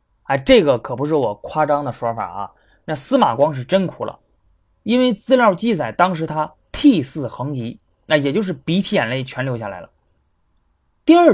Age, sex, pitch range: 20-39, male, 125-195 Hz